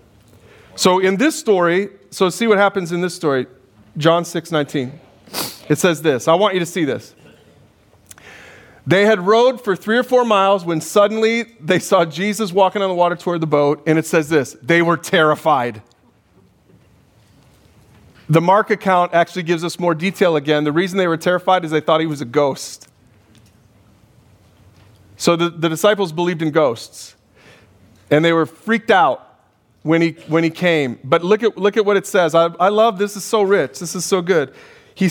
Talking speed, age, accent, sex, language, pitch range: 185 wpm, 40-59, American, male, English, 120-190 Hz